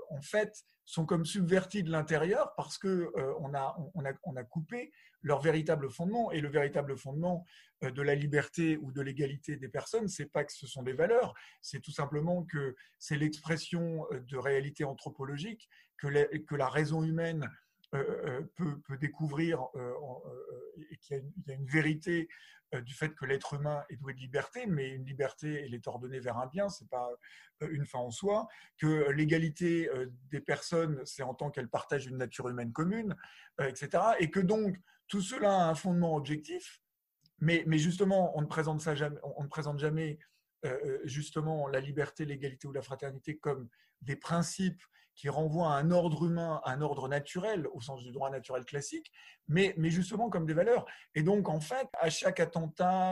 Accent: French